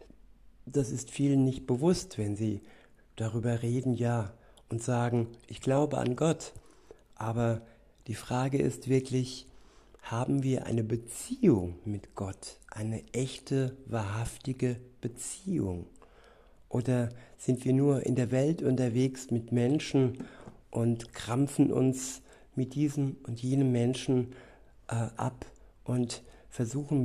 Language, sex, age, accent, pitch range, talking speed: German, male, 60-79, German, 115-130 Hz, 115 wpm